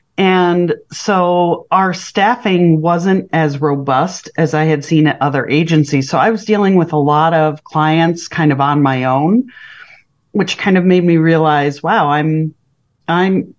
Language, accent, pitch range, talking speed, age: English, American, 150-185 Hz, 165 wpm, 40-59